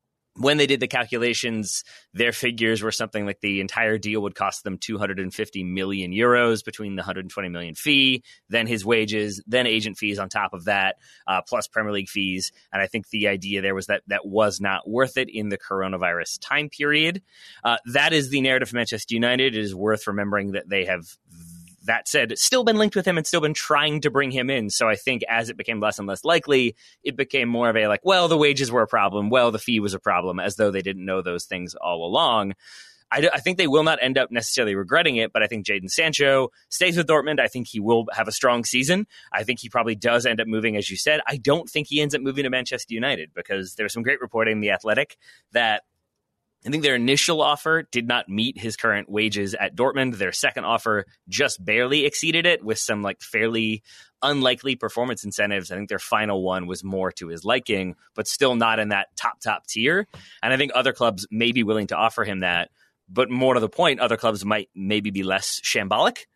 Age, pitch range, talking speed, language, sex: 30-49, 100-130 Hz, 225 wpm, English, male